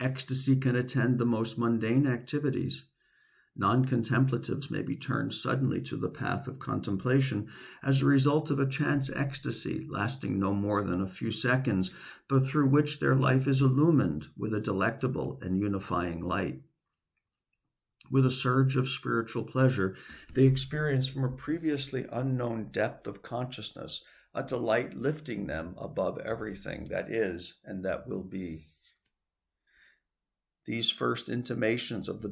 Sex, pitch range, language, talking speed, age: male, 105-135 Hz, English, 140 wpm, 50-69